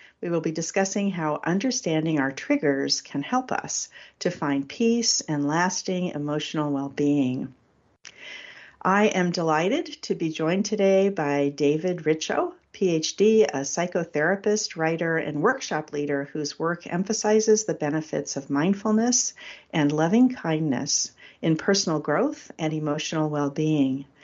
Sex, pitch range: female, 145-195 Hz